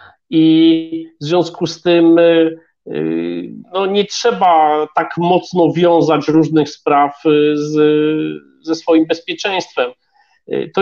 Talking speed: 100 wpm